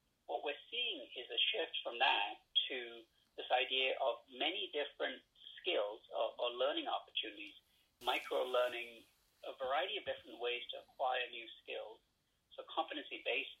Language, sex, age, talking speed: English, male, 50-69, 140 wpm